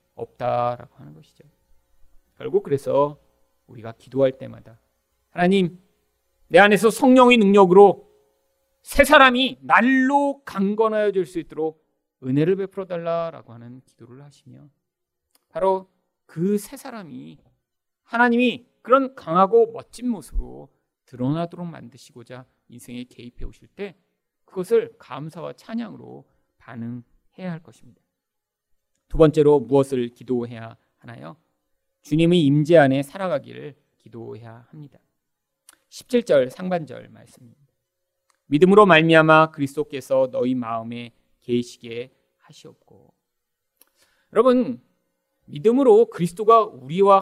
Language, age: Korean, 40-59